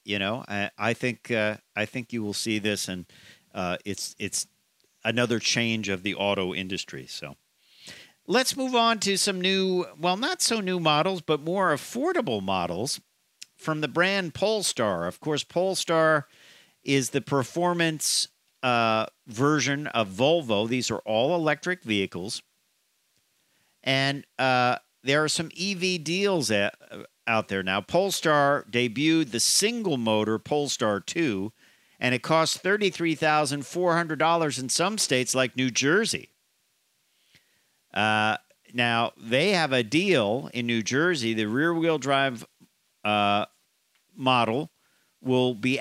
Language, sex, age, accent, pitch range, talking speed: English, male, 50-69, American, 115-165 Hz, 140 wpm